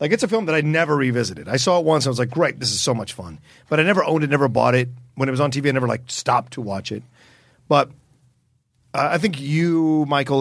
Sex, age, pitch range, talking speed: male, 40-59, 120-155 Hz, 270 wpm